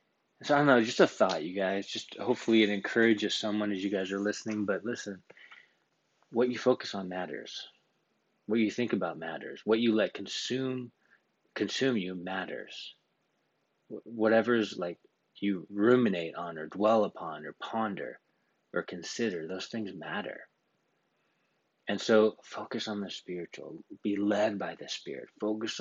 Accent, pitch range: American, 95-115 Hz